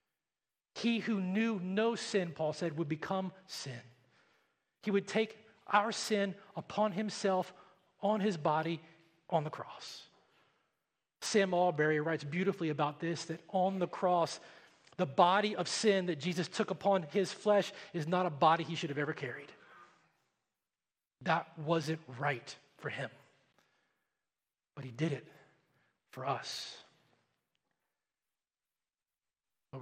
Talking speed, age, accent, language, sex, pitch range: 130 wpm, 40-59, American, English, male, 145-190 Hz